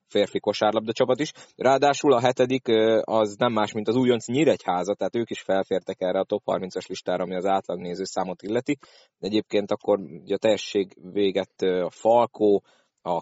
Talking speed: 170 wpm